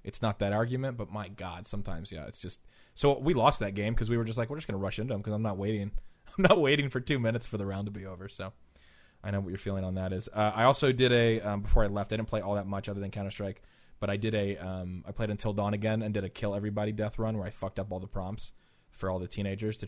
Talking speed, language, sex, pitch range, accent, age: 300 wpm, English, male, 95-110 Hz, American, 20-39